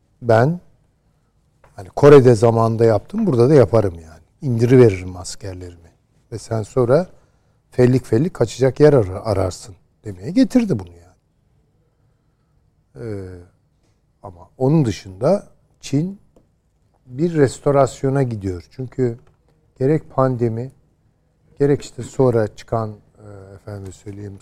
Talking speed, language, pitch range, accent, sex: 100 wpm, Turkish, 105-140 Hz, native, male